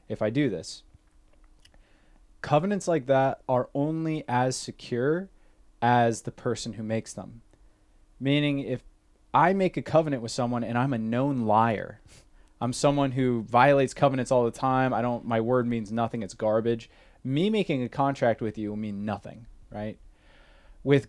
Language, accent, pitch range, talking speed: English, American, 110-140 Hz, 160 wpm